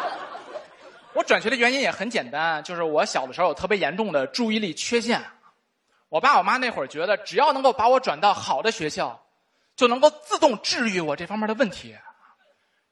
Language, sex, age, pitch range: Chinese, male, 20-39, 200-290 Hz